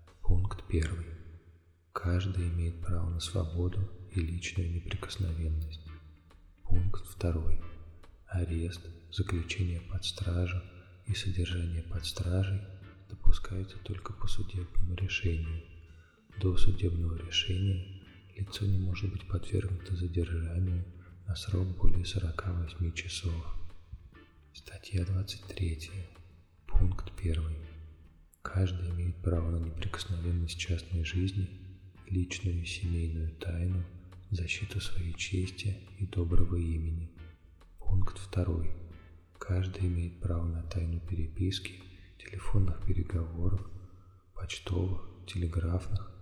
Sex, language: male, Russian